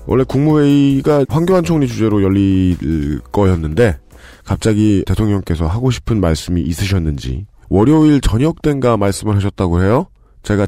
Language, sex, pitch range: Korean, male, 95-130 Hz